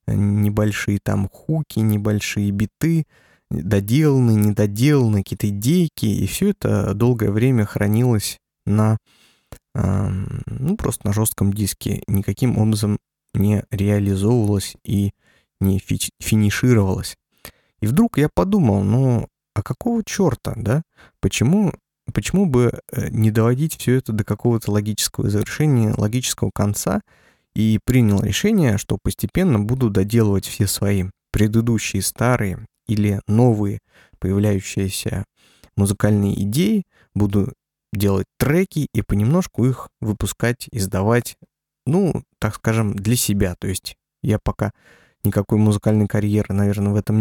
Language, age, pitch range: Russian, 20-39, 100-125 Hz